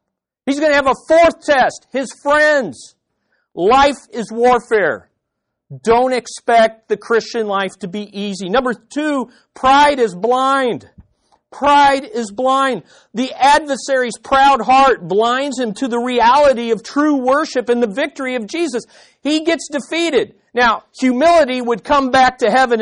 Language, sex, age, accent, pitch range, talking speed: English, male, 50-69, American, 185-265 Hz, 145 wpm